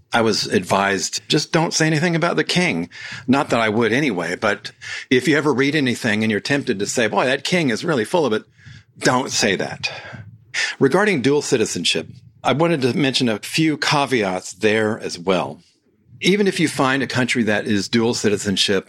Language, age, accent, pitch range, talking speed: English, 50-69, American, 105-135 Hz, 190 wpm